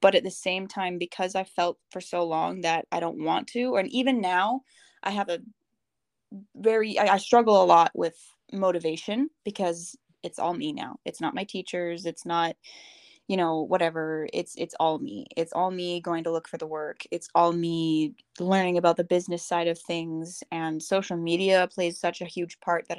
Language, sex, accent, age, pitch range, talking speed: English, female, American, 10-29, 170-210 Hz, 200 wpm